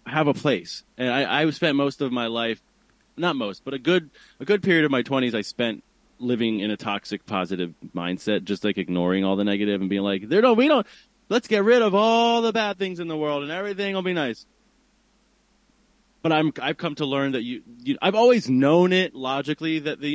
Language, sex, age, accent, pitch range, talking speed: English, male, 30-49, American, 110-155 Hz, 225 wpm